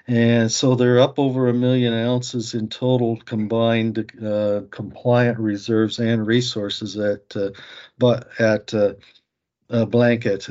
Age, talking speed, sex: 50-69, 125 wpm, male